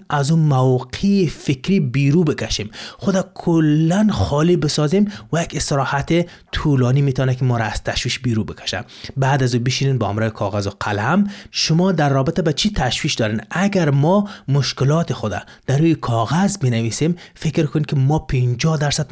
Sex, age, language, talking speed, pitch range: male, 30-49, Persian, 160 wpm, 125-175 Hz